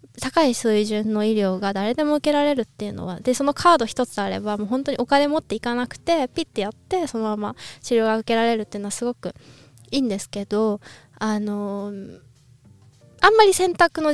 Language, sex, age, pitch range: Japanese, female, 20-39, 215-310 Hz